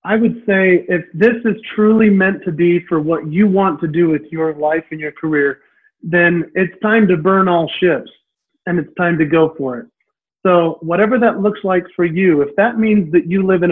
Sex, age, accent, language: male, 40-59, American, English